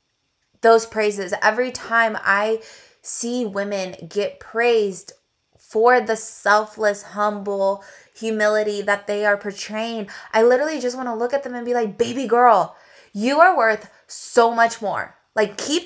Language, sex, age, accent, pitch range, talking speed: English, female, 20-39, American, 210-245 Hz, 150 wpm